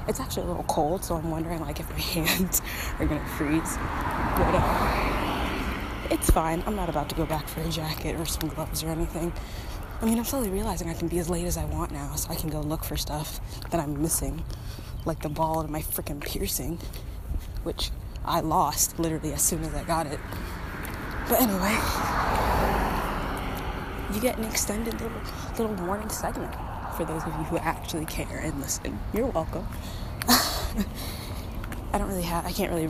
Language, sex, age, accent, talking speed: English, female, 20-39, American, 185 wpm